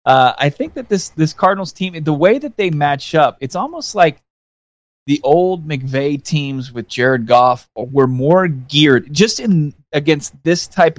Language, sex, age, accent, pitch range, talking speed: English, male, 20-39, American, 125-150 Hz, 175 wpm